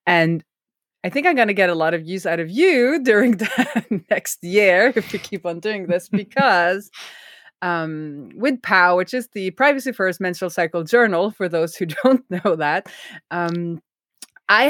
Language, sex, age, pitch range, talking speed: English, female, 20-39, 165-210 Hz, 175 wpm